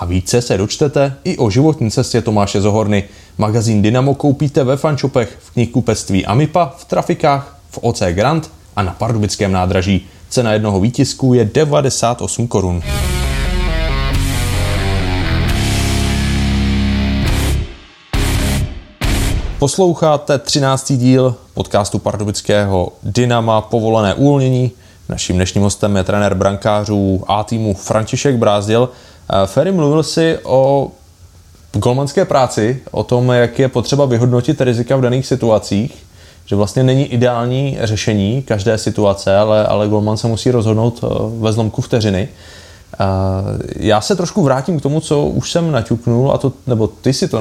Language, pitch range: Czech, 105-135 Hz